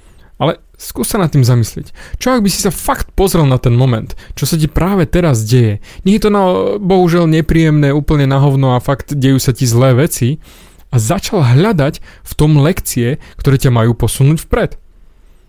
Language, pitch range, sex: Slovak, 120-150 Hz, male